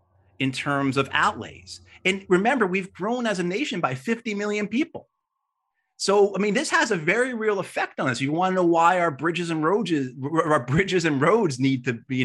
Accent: American